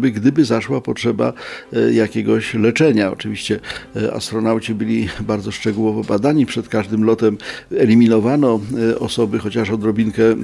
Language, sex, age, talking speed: Polish, male, 50-69, 105 wpm